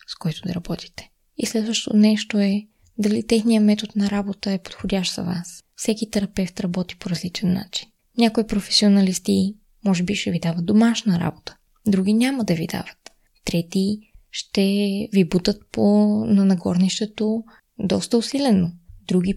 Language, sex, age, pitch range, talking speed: Bulgarian, female, 20-39, 180-215 Hz, 145 wpm